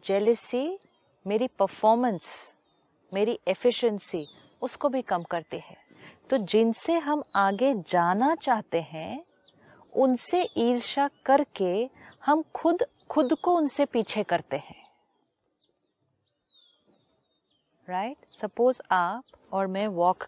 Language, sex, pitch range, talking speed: Hindi, female, 185-265 Hz, 105 wpm